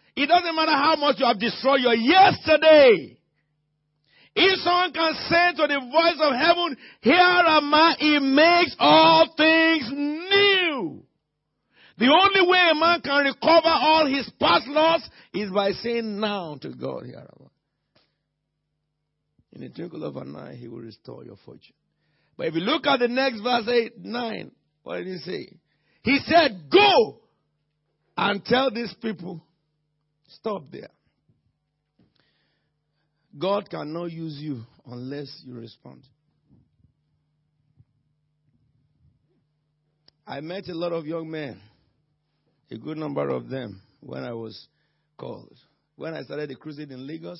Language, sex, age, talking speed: English, male, 60-79, 135 wpm